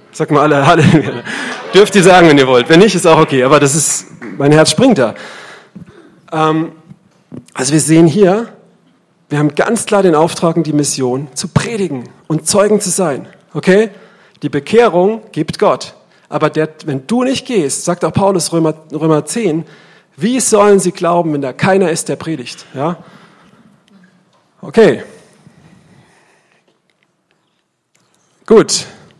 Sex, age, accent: male, 40-59, German